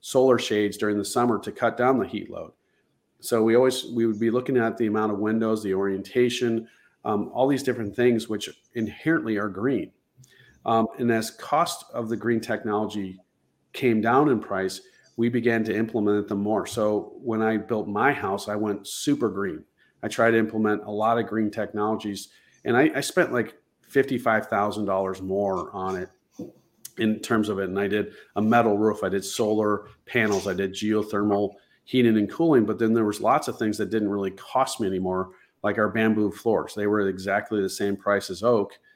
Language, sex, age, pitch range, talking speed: English, male, 40-59, 100-115 Hz, 195 wpm